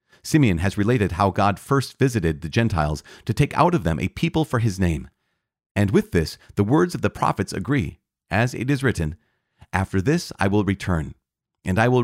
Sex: male